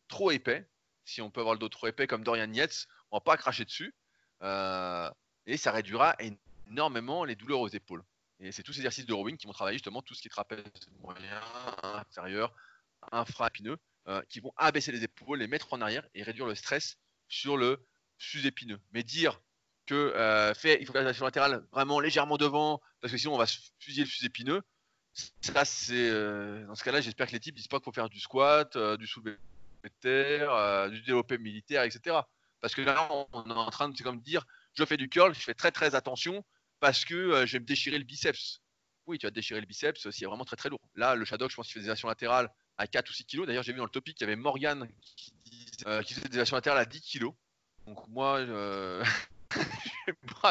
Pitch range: 105-140 Hz